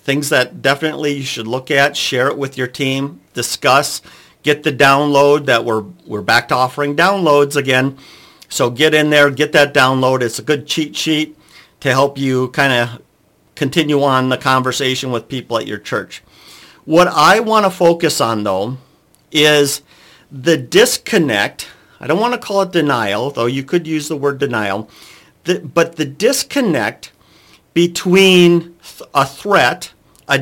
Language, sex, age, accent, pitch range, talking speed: English, male, 50-69, American, 130-165 Hz, 160 wpm